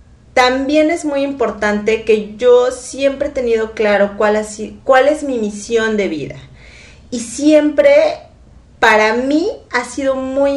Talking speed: 135 wpm